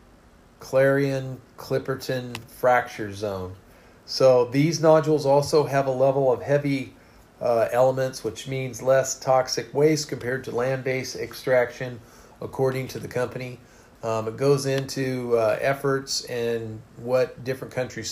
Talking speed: 125 wpm